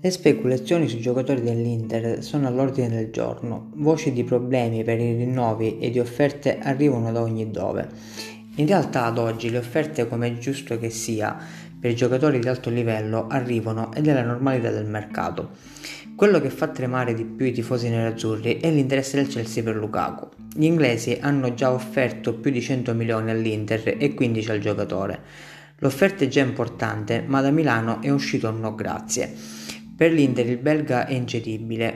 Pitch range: 115-140 Hz